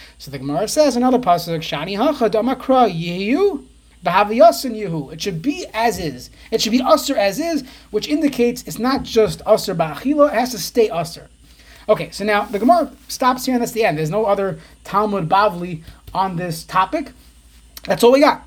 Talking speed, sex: 170 wpm, male